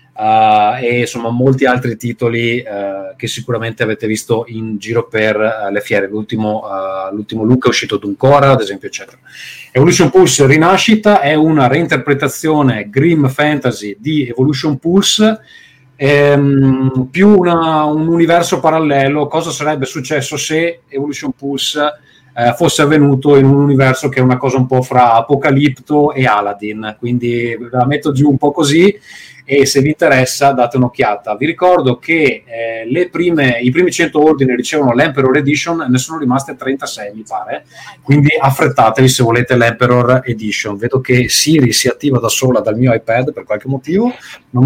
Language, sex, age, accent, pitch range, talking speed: Italian, male, 30-49, native, 120-150 Hz, 150 wpm